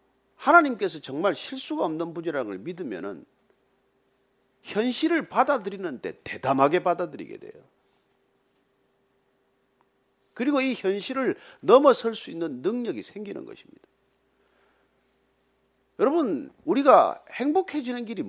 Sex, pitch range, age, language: male, 220-335 Hz, 40-59, Korean